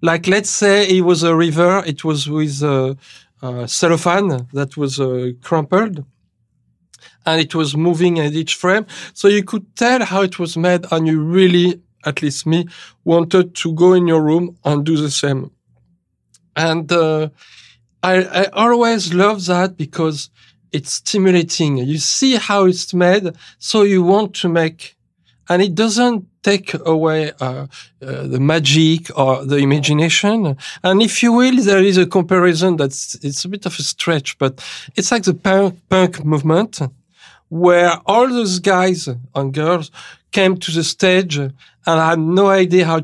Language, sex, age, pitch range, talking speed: English, male, 40-59, 150-185 Hz, 165 wpm